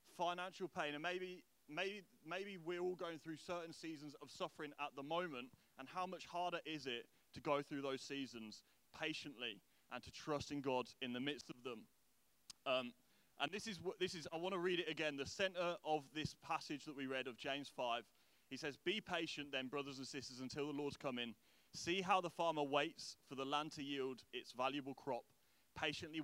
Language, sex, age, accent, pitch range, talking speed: English, male, 30-49, British, 140-170 Hz, 205 wpm